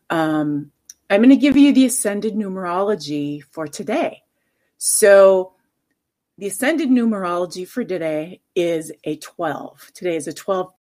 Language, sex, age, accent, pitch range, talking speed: English, female, 40-59, American, 170-230 Hz, 135 wpm